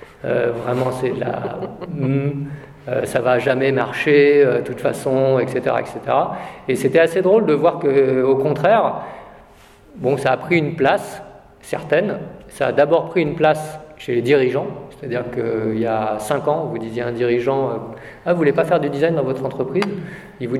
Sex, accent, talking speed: male, French, 195 wpm